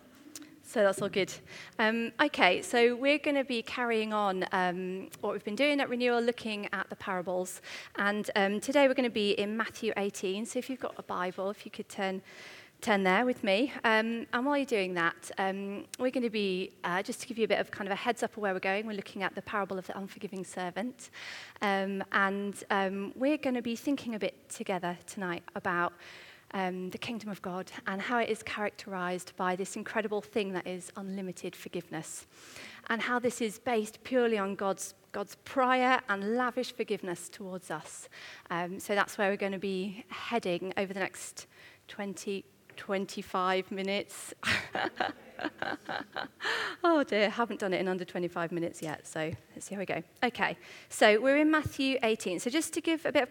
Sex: female